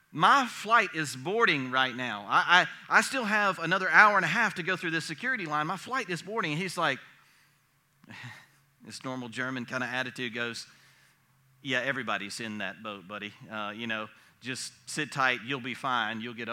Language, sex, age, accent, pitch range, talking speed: English, male, 40-59, American, 130-180 Hz, 190 wpm